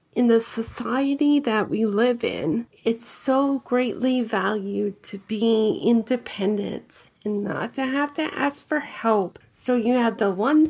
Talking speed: 150 wpm